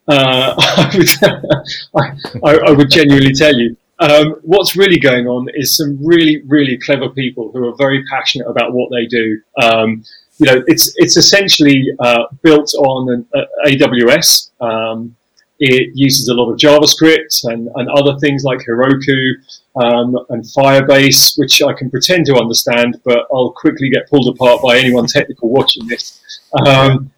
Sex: male